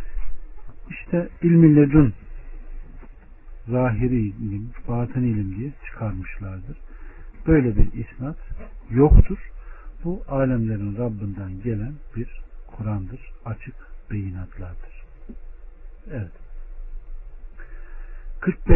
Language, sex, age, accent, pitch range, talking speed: Turkish, male, 60-79, native, 105-145 Hz, 70 wpm